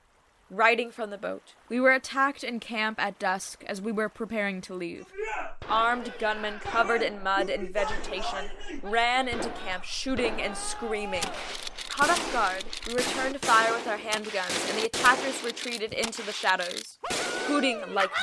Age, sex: 10-29, female